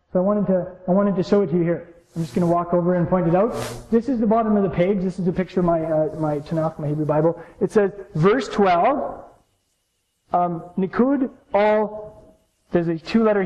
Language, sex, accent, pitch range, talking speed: English, male, American, 170-215 Hz, 220 wpm